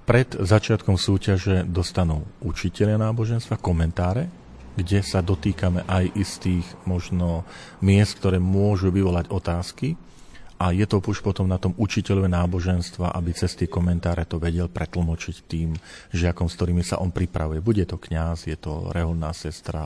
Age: 40-59